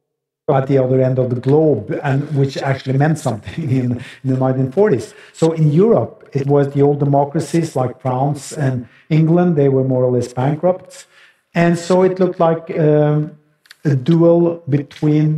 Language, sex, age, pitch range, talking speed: Greek, male, 50-69, 135-170 Hz, 170 wpm